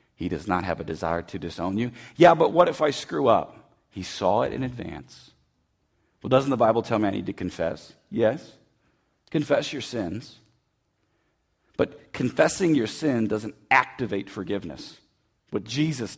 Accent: American